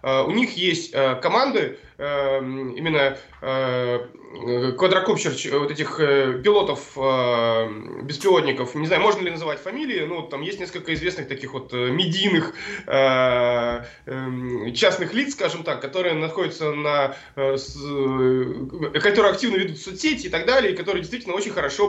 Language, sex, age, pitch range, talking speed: Russian, male, 20-39, 145-220 Hz, 145 wpm